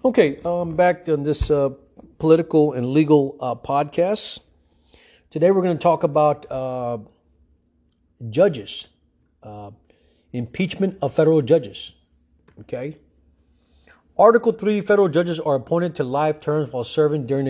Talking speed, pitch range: 130 wpm, 125-180 Hz